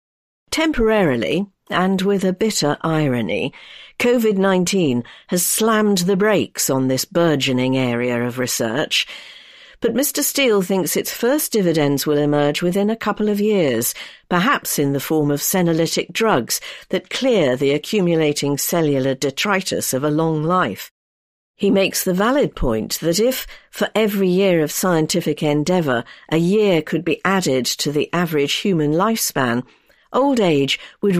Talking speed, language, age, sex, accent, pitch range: 145 wpm, English, 50-69, female, British, 145-210 Hz